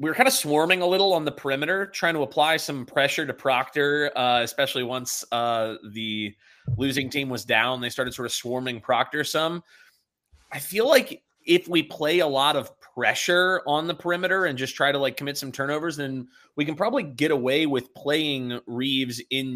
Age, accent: 20-39, American